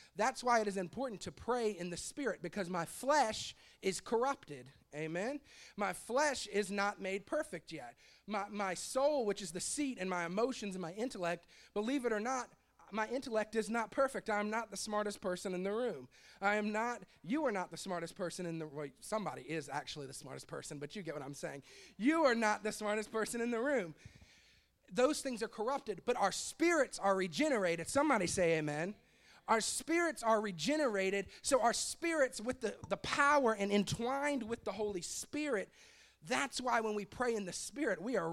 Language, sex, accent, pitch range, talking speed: English, male, American, 175-240 Hz, 195 wpm